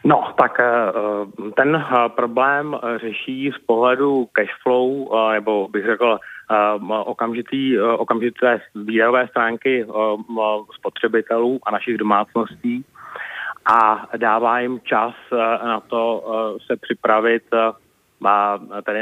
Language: Czech